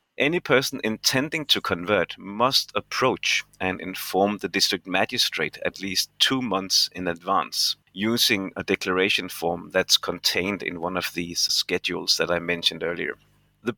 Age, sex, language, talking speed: 30-49, male, English, 150 wpm